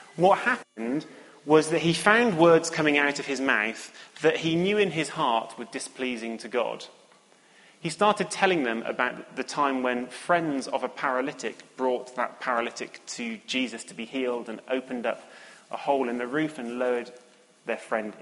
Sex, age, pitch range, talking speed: male, 30-49, 125-180 Hz, 180 wpm